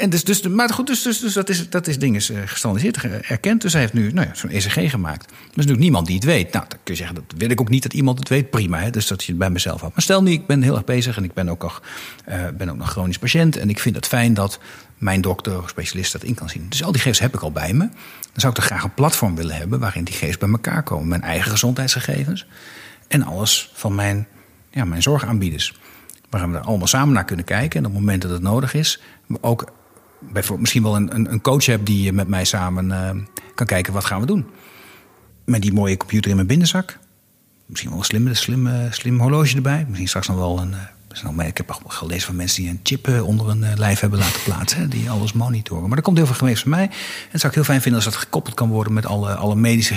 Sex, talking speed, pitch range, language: male, 265 wpm, 95-130 Hz, Dutch